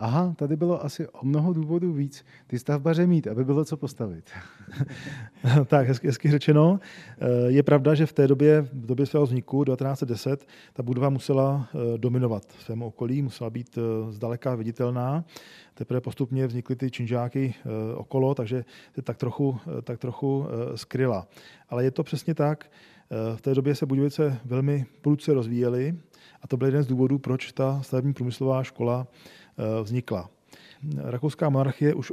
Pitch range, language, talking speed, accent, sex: 120-145 Hz, Czech, 150 wpm, native, male